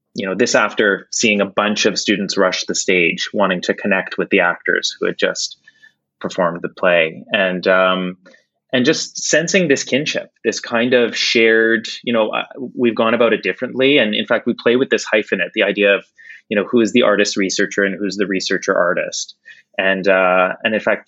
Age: 30-49